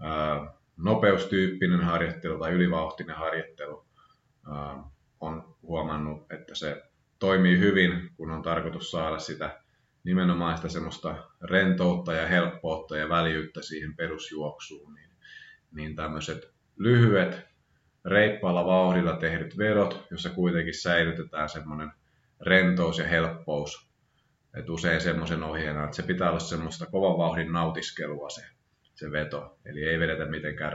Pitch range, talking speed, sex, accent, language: 75-90 Hz, 115 wpm, male, native, Finnish